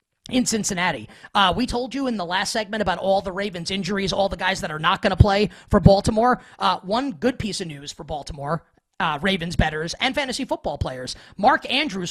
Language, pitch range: English, 180-230 Hz